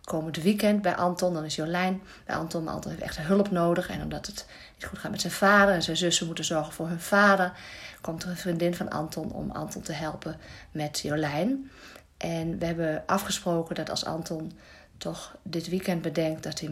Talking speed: 205 wpm